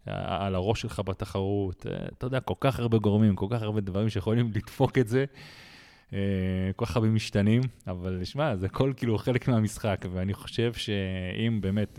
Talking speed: 160 wpm